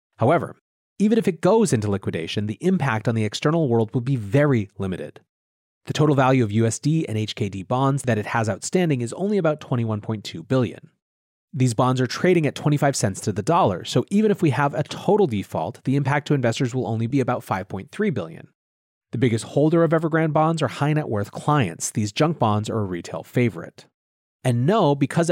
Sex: male